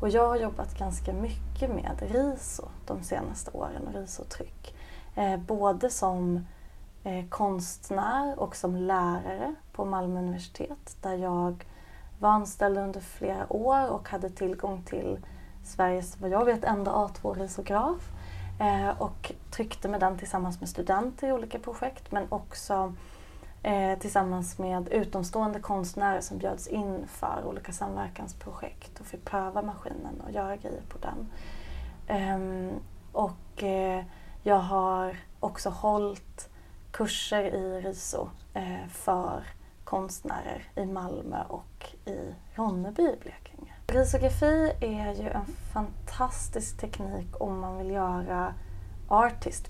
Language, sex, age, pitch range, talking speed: Swedish, female, 30-49, 170-205 Hz, 115 wpm